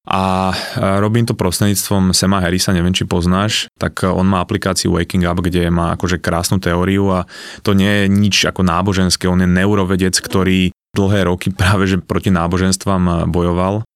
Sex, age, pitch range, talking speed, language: male, 20-39, 90-100 Hz, 165 wpm, Slovak